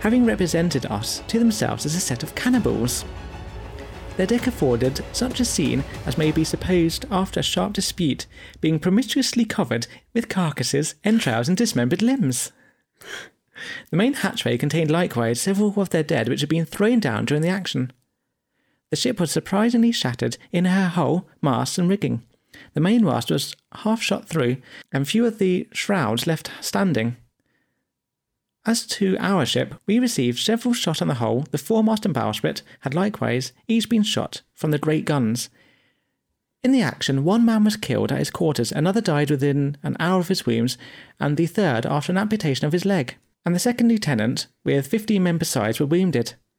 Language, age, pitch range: English, 40-59, 135-210 Hz